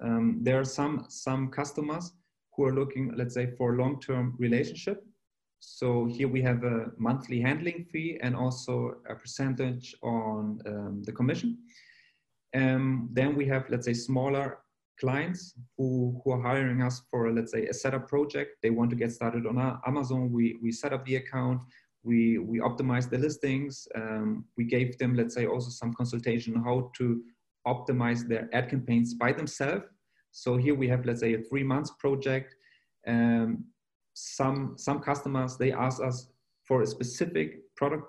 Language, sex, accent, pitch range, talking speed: English, male, German, 120-140 Hz, 170 wpm